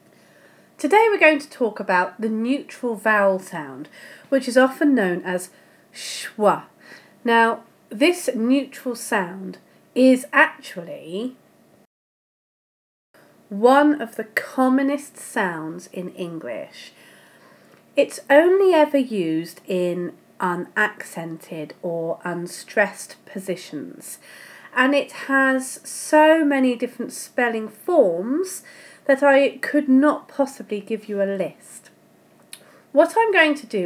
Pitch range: 195-280 Hz